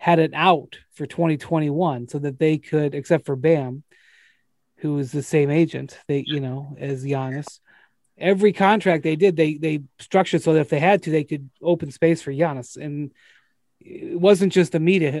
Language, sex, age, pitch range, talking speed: English, male, 30-49, 150-185 Hz, 185 wpm